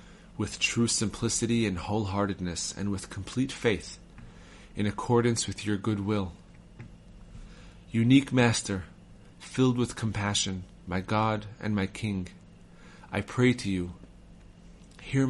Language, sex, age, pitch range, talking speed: English, male, 30-49, 95-120 Hz, 120 wpm